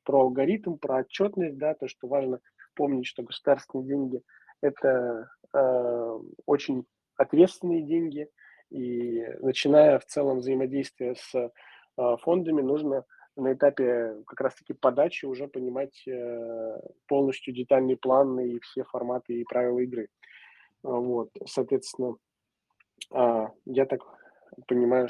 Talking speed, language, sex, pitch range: 115 wpm, Russian, male, 120-140 Hz